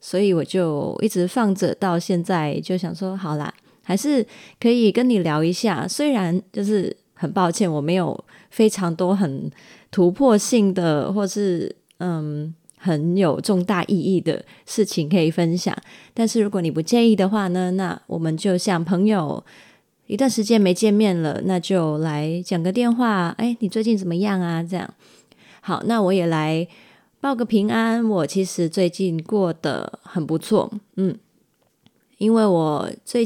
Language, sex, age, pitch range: Chinese, female, 20-39, 175-215 Hz